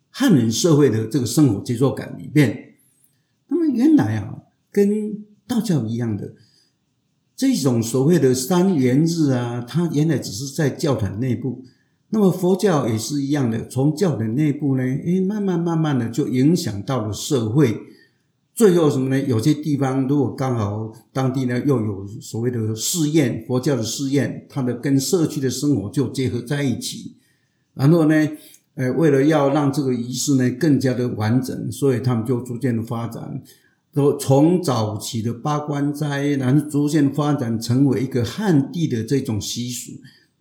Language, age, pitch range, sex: Chinese, 50-69, 125-150 Hz, male